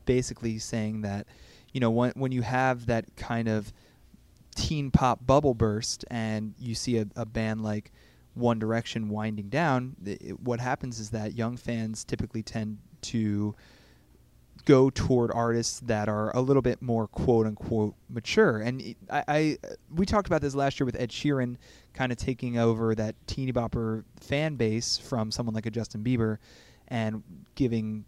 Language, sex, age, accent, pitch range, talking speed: English, male, 20-39, American, 110-130 Hz, 160 wpm